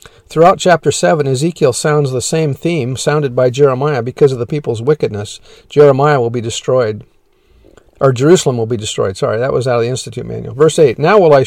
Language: English